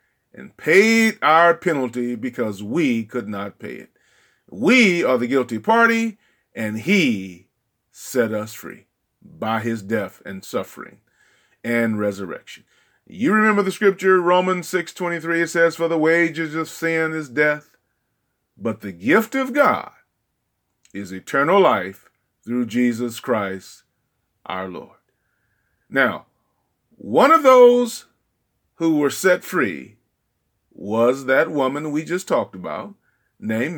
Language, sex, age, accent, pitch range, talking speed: English, male, 40-59, American, 115-195 Hz, 130 wpm